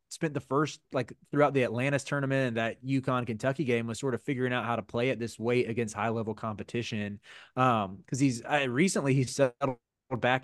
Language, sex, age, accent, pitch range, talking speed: English, male, 20-39, American, 110-130 Hz, 205 wpm